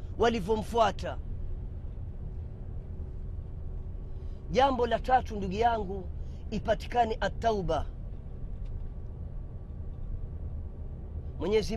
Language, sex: Swahili, female